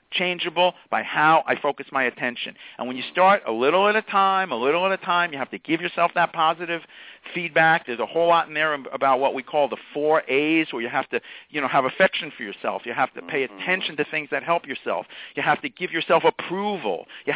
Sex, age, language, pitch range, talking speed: male, 50-69, English, 140-175 Hz, 240 wpm